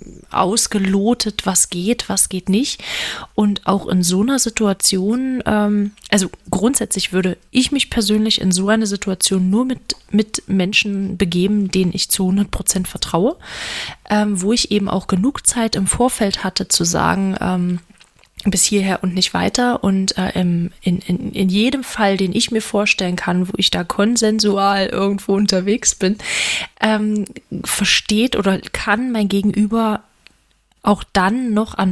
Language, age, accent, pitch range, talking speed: German, 20-39, German, 185-215 Hz, 150 wpm